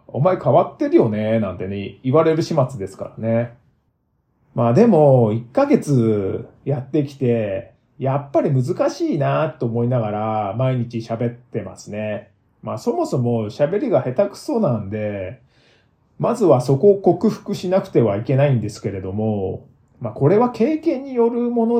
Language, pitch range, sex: Japanese, 110-180 Hz, male